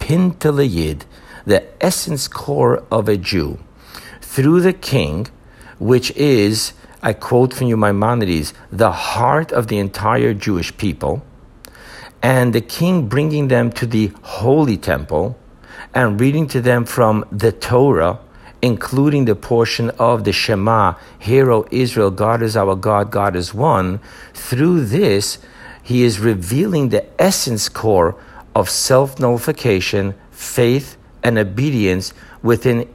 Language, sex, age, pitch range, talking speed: English, male, 60-79, 100-130 Hz, 125 wpm